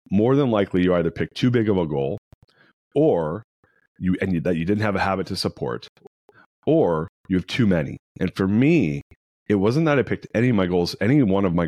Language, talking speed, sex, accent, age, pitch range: English, 225 wpm, male, American, 30-49, 85-100 Hz